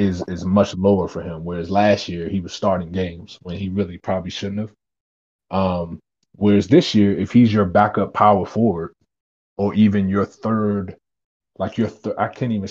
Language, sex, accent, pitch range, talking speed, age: English, male, American, 90-110 Hz, 185 wpm, 20-39